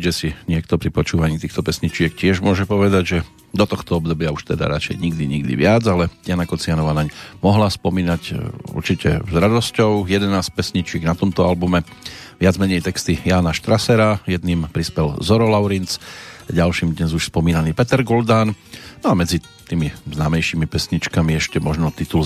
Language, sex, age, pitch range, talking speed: Slovak, male, 40-59, 85-110 Hz, 155 wpm